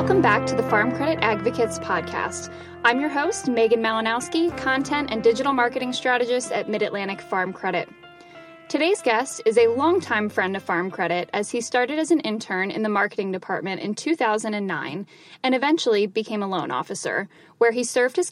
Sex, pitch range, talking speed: female, 205-260 Hz, 175 wpm